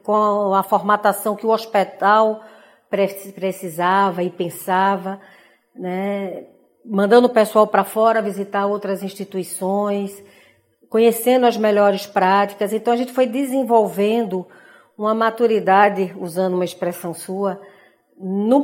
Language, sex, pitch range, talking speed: Portuguese, female, 190-230 Hz, 110 wpm